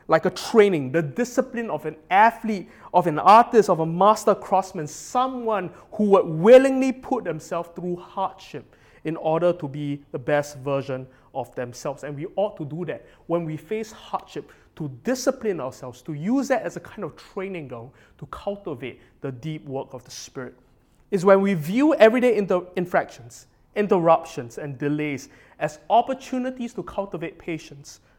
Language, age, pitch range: English, 20-39, 145-200 Hz